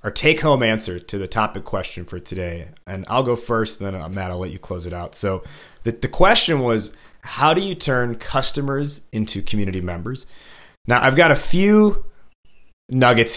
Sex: male